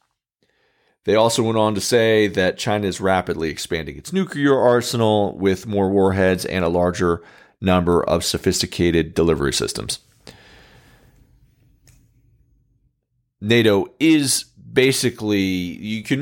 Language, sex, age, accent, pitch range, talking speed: English, male, 40-59, American, 90-120 Hz, 110 wpm